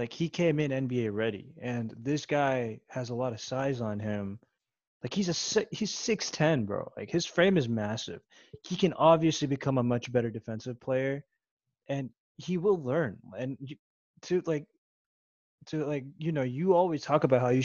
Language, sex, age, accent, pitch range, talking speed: English, male, 20-39, American, 115-145 Hz, 180 wpm